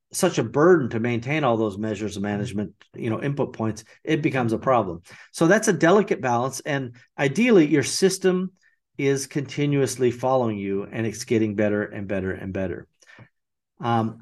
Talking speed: 170 wpm